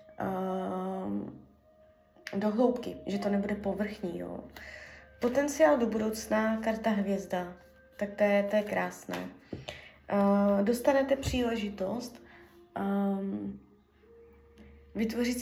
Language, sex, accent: Czech, female, native